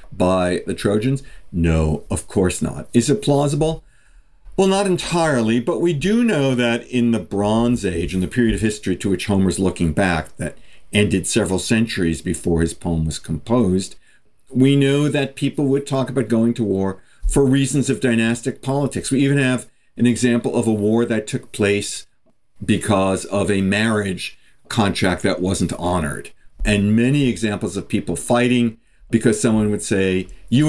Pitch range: 95-125 Hz